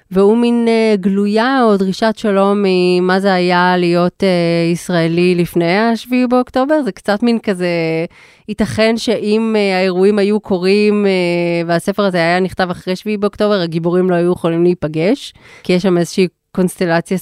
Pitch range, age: 180-215 Hz, 20-39